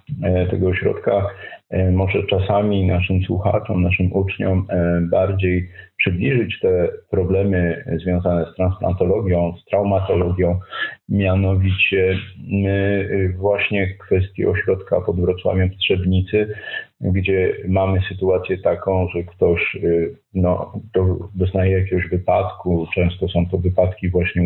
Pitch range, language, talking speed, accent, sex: 90-95 Hz, Polish, 100 wpm, native, male